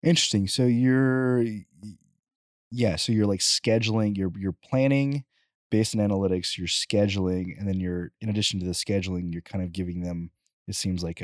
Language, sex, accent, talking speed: English, male, American, 170 wpm